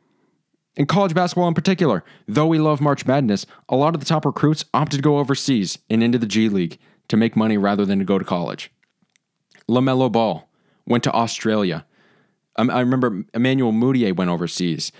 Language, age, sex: English, 20-39, male